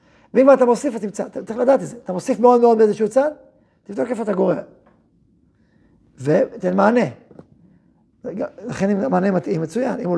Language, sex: Hebrew, male